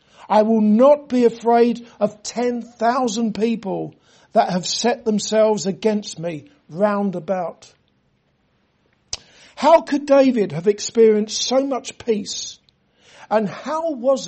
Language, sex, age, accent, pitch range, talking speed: English, male, 50-69, British, 200-245 Hz, 115 wpm